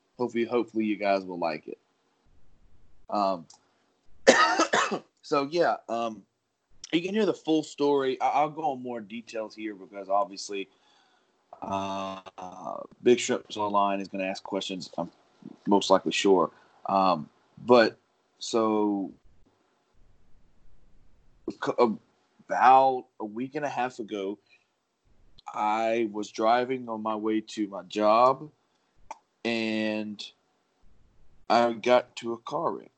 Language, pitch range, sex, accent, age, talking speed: English, 100-120 Hz, male, American, 20-39, 120 wpm